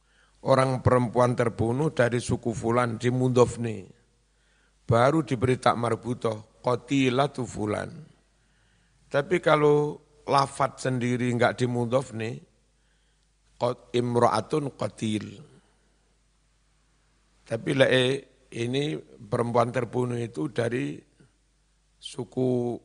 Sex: male